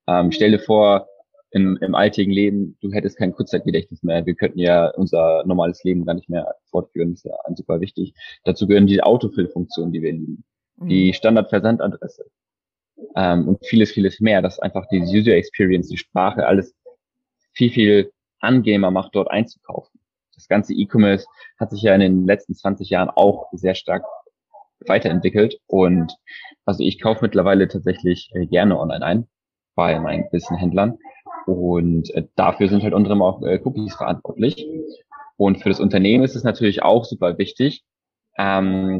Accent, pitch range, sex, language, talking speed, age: German, 90-110 Hz, male, German, 160 wpm, 20-39